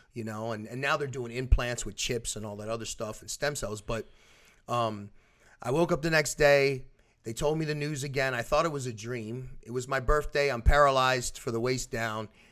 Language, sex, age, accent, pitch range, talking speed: English, male, 30-49, American, 110-135 Hz, 230 wpm